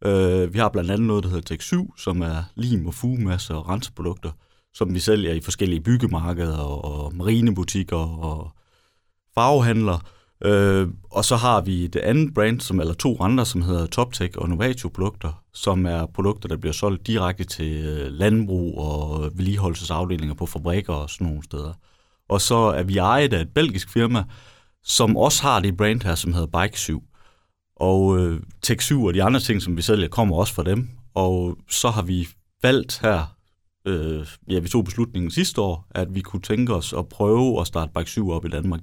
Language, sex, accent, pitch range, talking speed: Danish, male, native, 85-110 Hz, 180 wpm